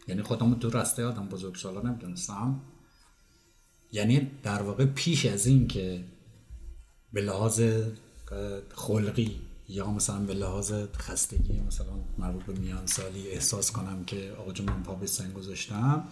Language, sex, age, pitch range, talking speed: Persian, male, 50-69, 100-130 Hz, 140 wpm